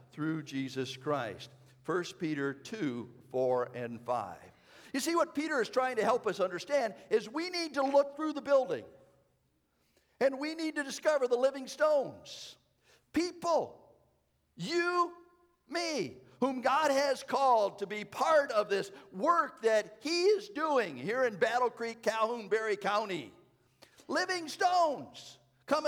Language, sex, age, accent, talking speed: English, male, 50-69, American, 145 wpm